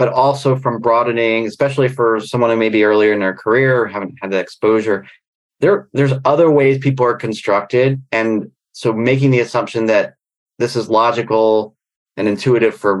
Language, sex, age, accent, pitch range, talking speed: English, male, 30-49, American, 110-135 Hz, 175 wpm